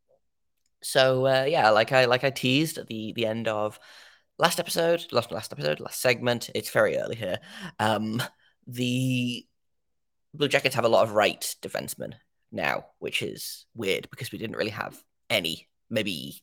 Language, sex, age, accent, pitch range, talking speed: English, male, 10-29, British, 110-135 Hz, 165 wpm